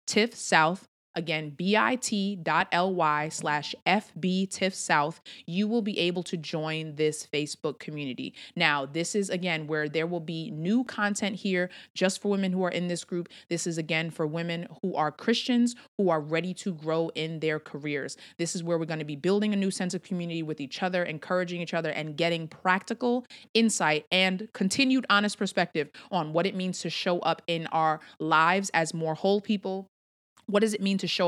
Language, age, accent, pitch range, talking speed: English, 30-49, American, 155-185 Hz, 185 wpm